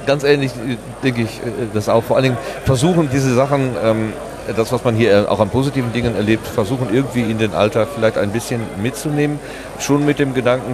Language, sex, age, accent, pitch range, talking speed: German, male, 40-59, German, 115-145 Hz, 190 wpm